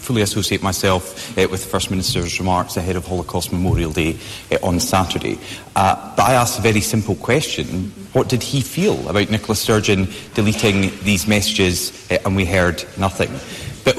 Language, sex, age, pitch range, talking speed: English, male, 30-49, 105-140 Hz, 175 wpm